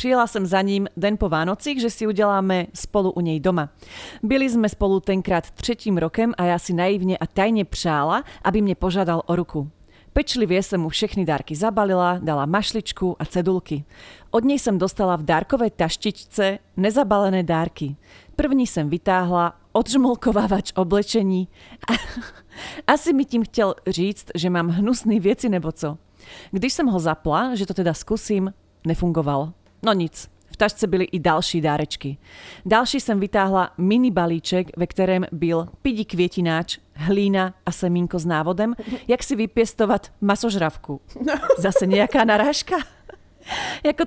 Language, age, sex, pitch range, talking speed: Slovak, 40-59, female, 170-220 Hz, 145 wpm